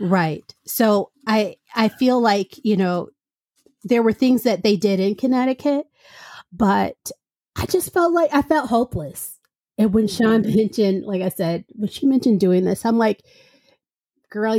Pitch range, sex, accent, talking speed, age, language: 195-240 Hz, female, American, 160 wpm, 30-49, English